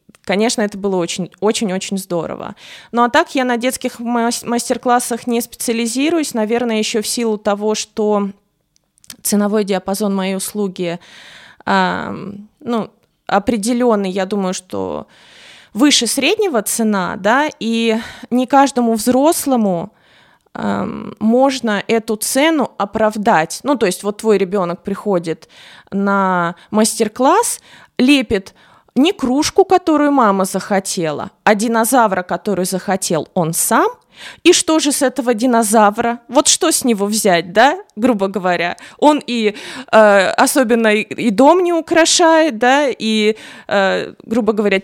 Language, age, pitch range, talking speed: Russian, 20-39, 200-255 Hz, 125 wpm